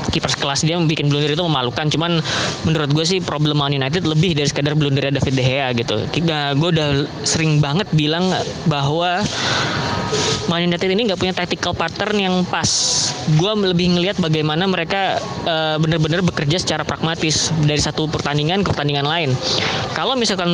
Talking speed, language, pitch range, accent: 160 wpm, Indonesian, 150-180 Hz, native